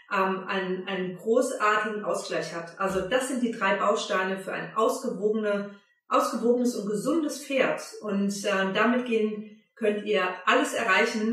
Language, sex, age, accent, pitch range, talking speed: German, female, 40-59, German, 190-230 Hz, 140 wpm